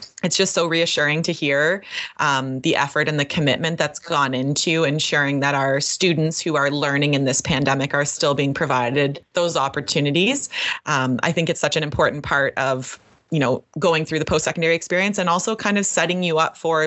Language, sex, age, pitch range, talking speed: English, female, 20-39, 140-170 Hz, 195 wpm